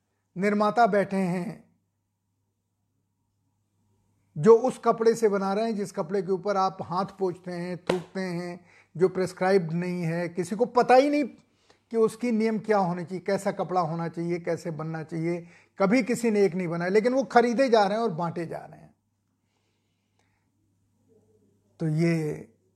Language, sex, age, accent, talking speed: Hindi, male, 50-69, native, 160 wpm